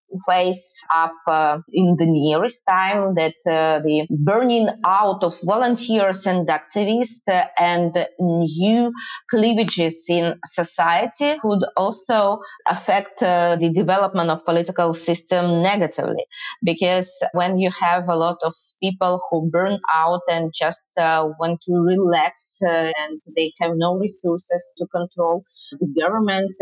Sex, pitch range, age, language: female, 170-200 Hz, 30-49, English